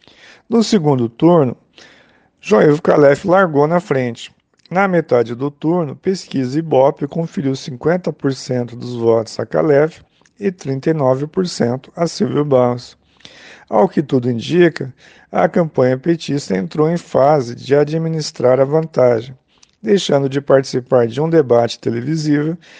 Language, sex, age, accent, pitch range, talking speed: Portuguese, male, 50-69, Brazilian, 130-165 Hz, 120 wpm